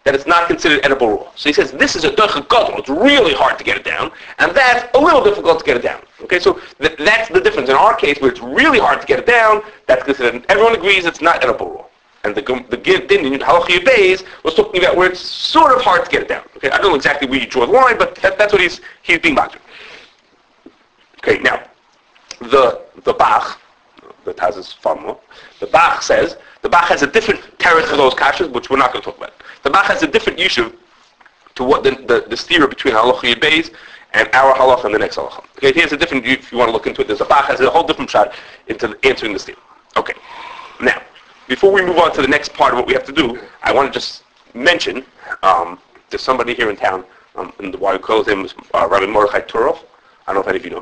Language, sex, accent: English, male, American